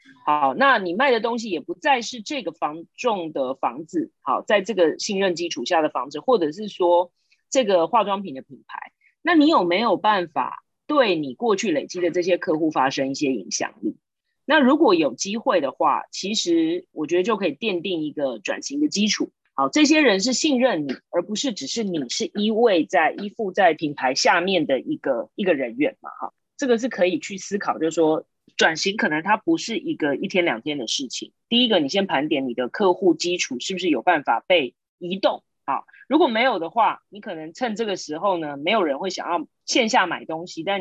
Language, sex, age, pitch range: Chinese, female, 30-49, 170-270 Hz